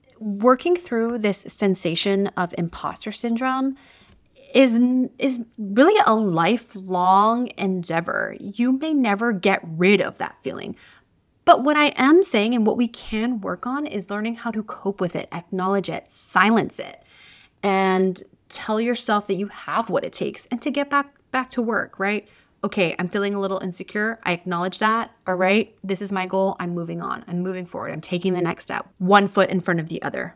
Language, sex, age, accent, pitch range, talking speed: English, female, 20-39, American, 180-235 Hz, 185 wpm